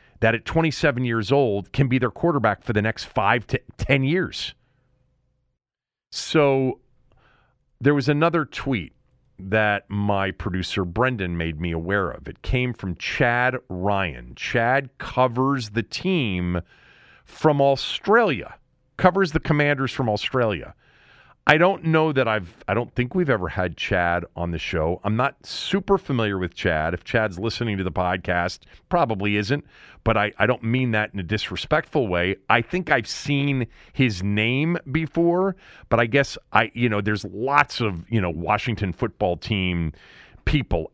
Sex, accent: male, American